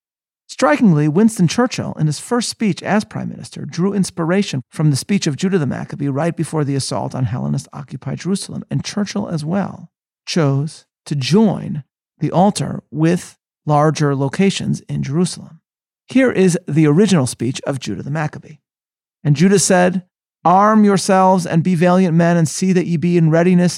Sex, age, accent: male, 40-59, American